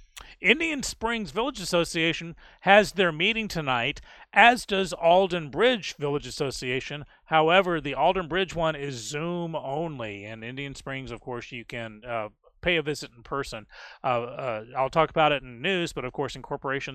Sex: male